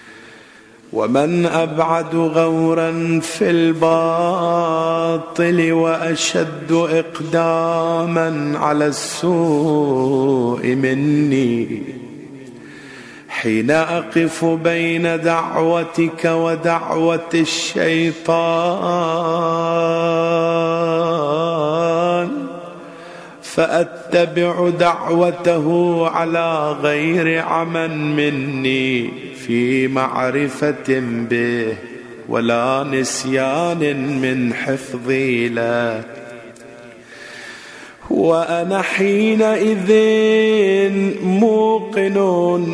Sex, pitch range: male, 160-195 Hz